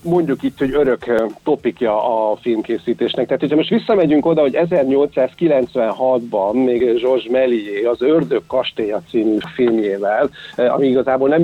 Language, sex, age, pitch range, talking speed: Hungarian, male, 50-69, 120-140 Hz, 130 wpm